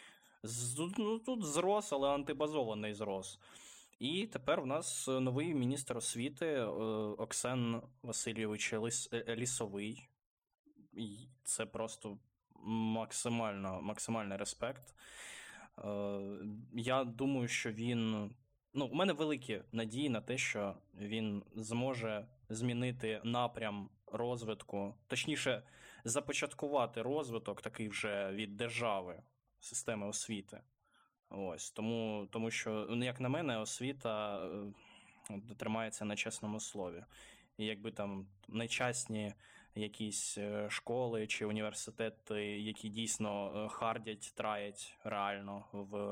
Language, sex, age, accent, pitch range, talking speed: Ukrainian, male, 20-39, native, 105-125 Hz, 95 wpm